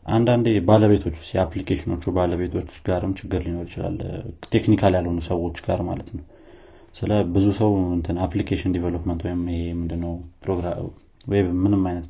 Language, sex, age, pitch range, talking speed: Amharic, male, 30-49, 85-95 Hz, 100 wpm